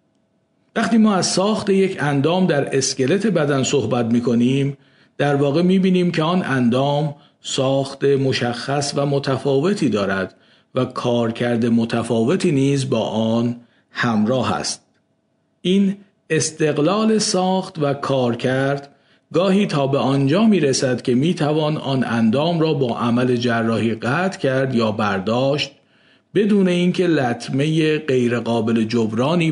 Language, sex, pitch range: Persian, male, 120-160 Hz